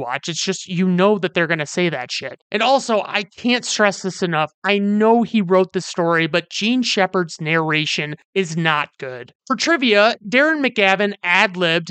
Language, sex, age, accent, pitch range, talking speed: English, male, 30-49, American, 165-210 Hz, 180 wpm